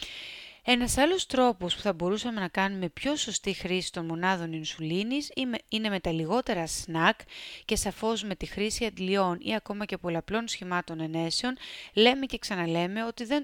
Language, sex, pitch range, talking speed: Greek, female, 170-210 Hz, 160 wpm